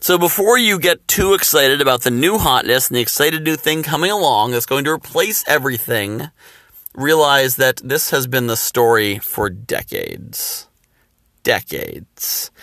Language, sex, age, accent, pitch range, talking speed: English, male, 40-59, American, 120-155 Hz, 150 wpm